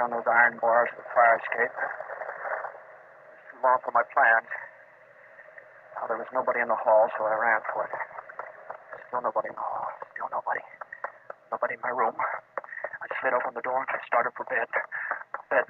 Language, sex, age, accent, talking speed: English, male, 40-59, American, 185 wpm